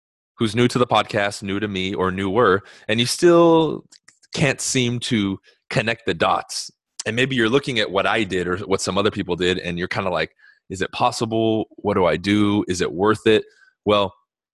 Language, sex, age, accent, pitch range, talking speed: English, male, 20-39, American, 95-125 Hz, 205 wpm